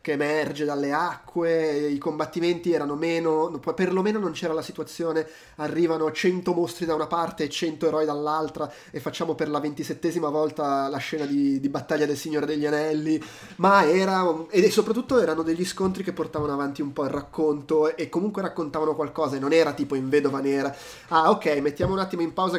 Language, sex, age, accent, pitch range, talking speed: Italian, male, 20-39, native, 150-175 Hz, 185 wpm